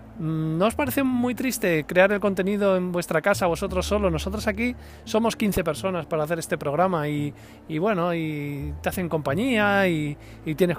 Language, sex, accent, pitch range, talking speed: Spanish, male, Spanish, 135-175 Hz, 180 wpm